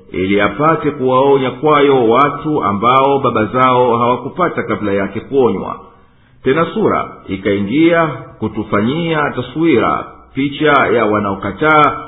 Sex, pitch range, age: male, 110-145 Hz, 50-69